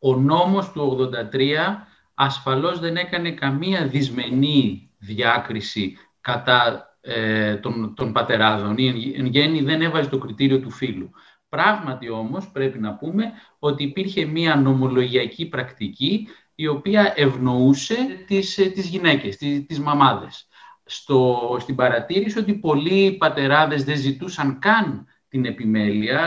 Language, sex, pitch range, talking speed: Greek, male, 130-195 Hz, 125 wpm